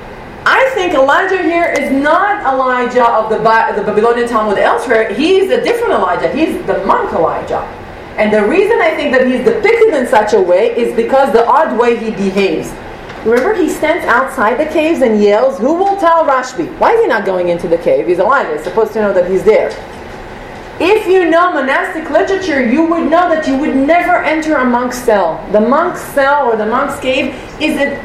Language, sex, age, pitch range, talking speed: English, female, 30-49, 240-345 Hz, 200 wpm